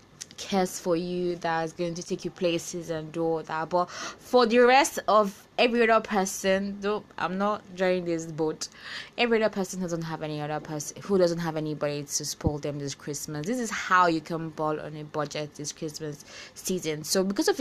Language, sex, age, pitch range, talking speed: English, female, 20-39, 165-195 Hz, 200 wpm